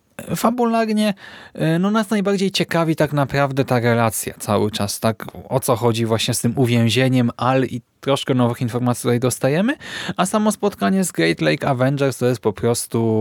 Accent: native